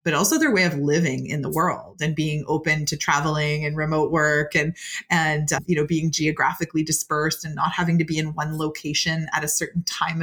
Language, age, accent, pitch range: English, 30-49, American, 150-175 Hz